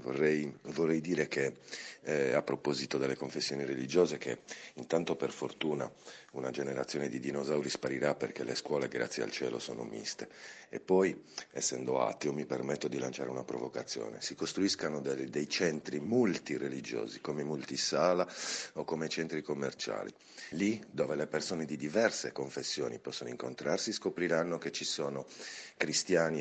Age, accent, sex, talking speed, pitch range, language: 50-69, native, male, 145 wpm, 95-130 Hz, Italian